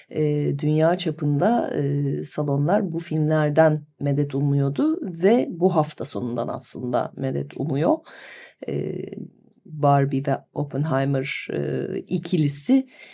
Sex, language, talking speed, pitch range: female, Turkish, 80 wpm, 145-185 Hz